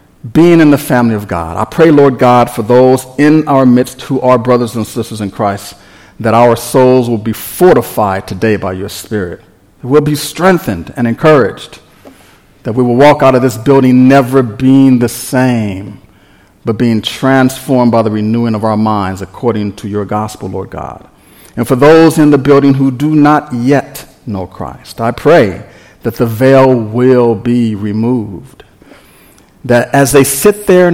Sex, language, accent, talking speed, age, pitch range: male, English, American, 175 wpm, 50-69, 105-135 Hz